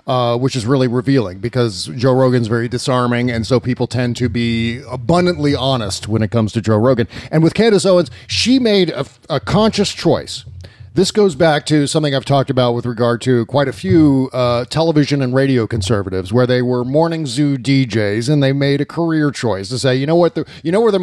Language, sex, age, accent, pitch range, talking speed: English, male, 40-59, American, 125-160 Hz, 210 wpm